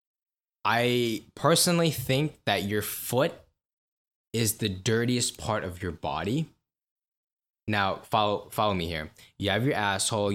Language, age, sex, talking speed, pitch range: English, 10-29, male, 130 wpm, 95-125 Hz